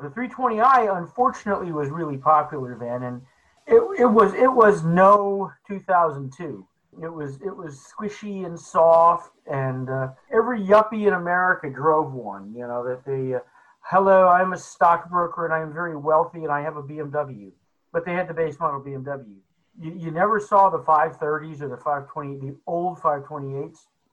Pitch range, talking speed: 140-185 Hz, 165 wpm